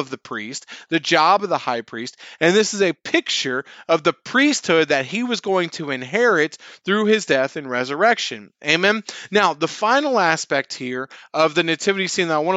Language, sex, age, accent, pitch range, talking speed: English, male, 30-49, American, 140-190 Hz, 195 wpm